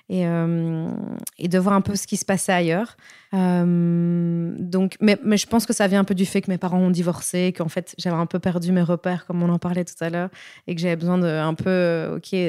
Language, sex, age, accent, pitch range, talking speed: French, female, 20-39, French, 180-205 Hz, 255 wpm